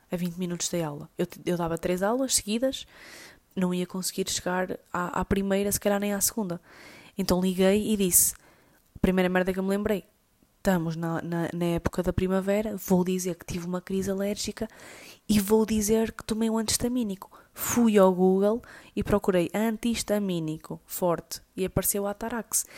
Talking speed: 170 wpm